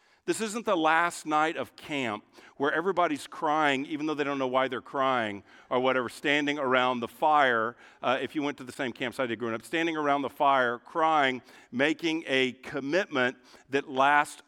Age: 50-69